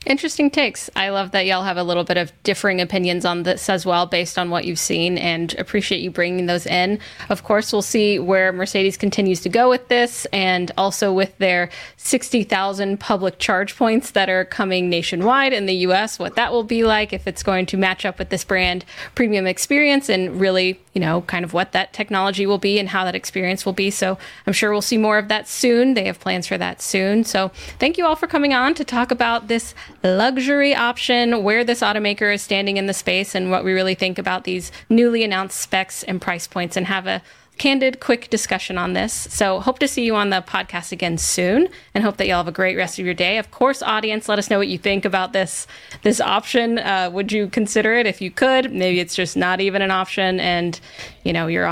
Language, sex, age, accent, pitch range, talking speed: English, female, 20-39, American, 185-235 Hz, 230 wpm